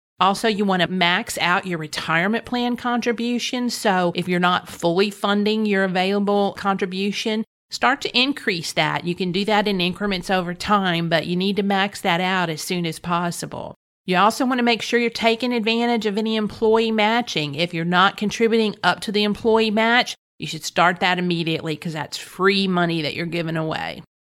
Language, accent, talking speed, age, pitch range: English, American, 190 wpm, 40-59, 175-220 Hz